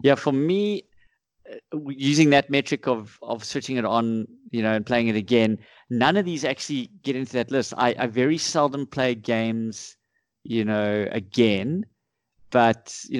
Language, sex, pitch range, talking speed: English, male, 110-135 Hz, 165 wpm